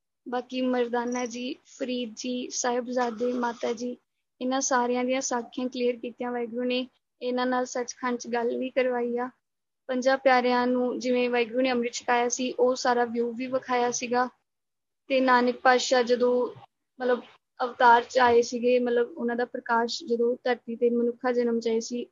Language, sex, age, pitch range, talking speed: Punjabi, female, 20-39, 240-255 Hz, 155 wpm